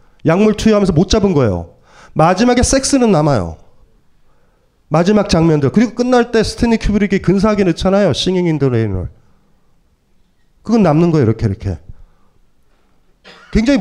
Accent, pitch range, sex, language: native, 135-220 Hz, male, Korean